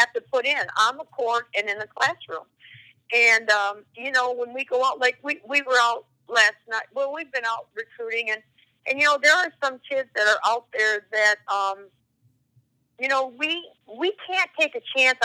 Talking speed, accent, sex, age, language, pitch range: 210 wpm, American, female, 50-69, English, 215-280 Hz